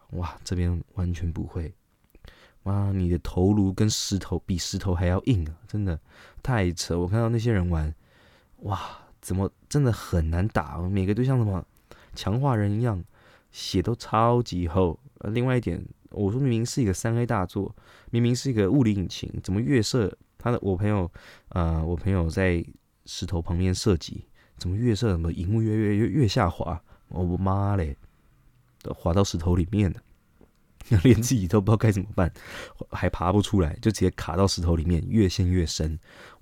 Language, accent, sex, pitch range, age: Chinese, native, male, 90-110 Hz, 20-39